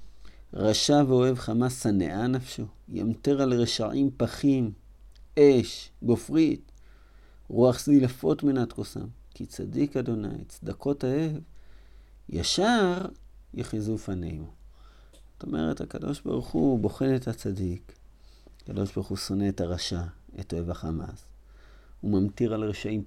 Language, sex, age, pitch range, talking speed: Hebrew, male, 50-69, 95-130 Hz, 120 wpm